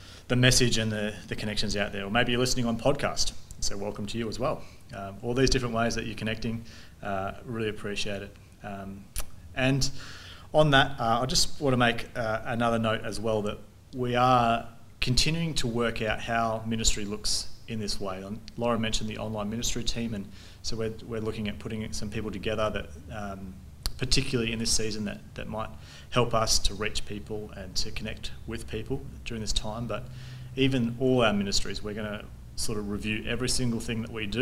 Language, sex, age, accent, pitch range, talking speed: English, male, 30-49, Australian, 100-120 Hz, 200 wpm